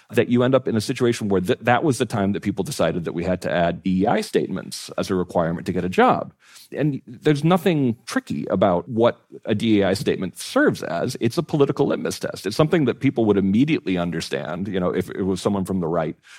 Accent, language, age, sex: American, English, 40-59, male